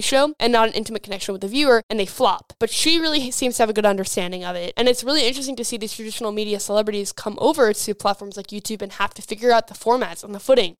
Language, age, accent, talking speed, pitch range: English, 10-29, American, 270 wpm, 205-240 Hz